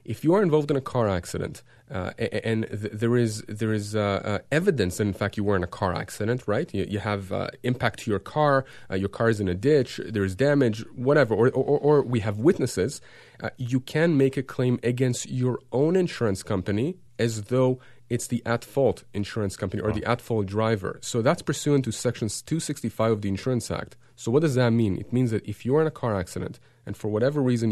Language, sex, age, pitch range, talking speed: English, male, 30-49, 105-130 Hz, 225 wpm